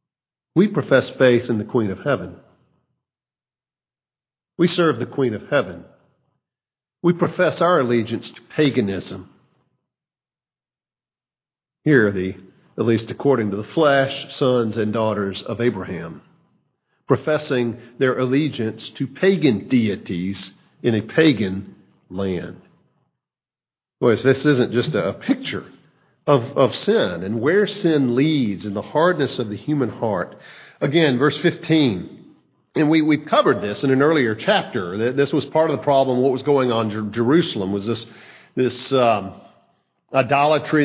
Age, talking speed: 50-69, 140 wpm